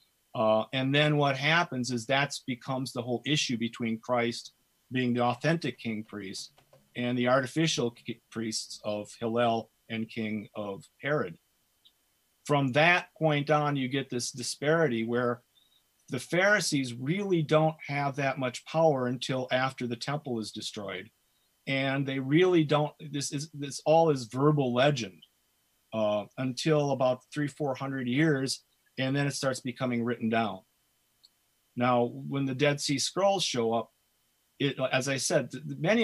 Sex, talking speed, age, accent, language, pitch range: male, 150 wpm, 40-59, American, English, 120-150 Hz